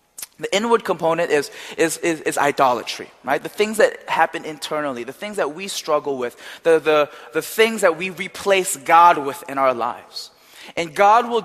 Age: 20-39